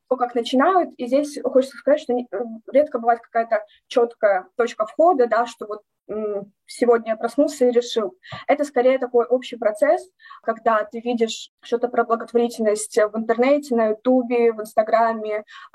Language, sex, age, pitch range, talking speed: Russian, female, 20-39, 225-265 Hz, 145 wpm